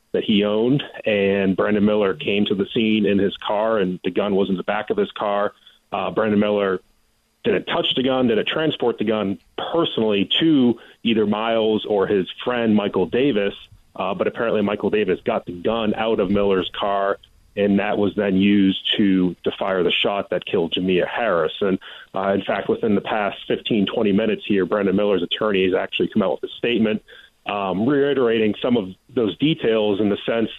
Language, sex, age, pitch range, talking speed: English, male, 30-49, 100-110 Hz, 195 wpm